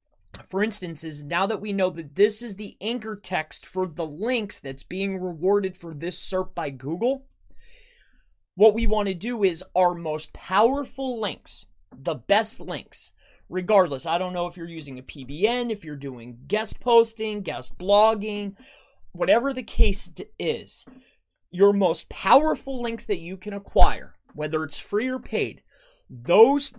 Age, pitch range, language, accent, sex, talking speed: 30-49, 160-220 Hz, English, American, male, 160 wpm